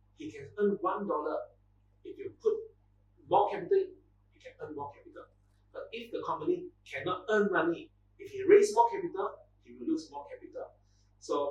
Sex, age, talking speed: male, 30-49, 170 wpm